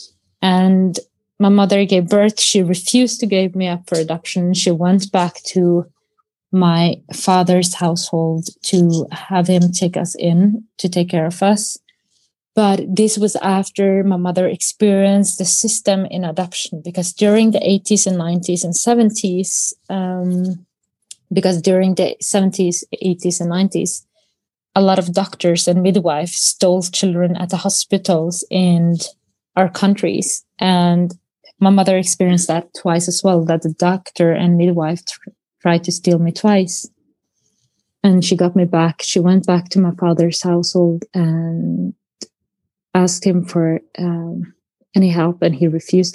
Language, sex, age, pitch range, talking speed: English, female, 20-39, 175-195 Hz, 145 wpm